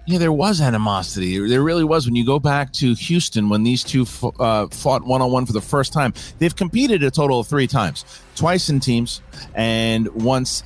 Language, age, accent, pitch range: English, 40-59, American, 120-170 Hz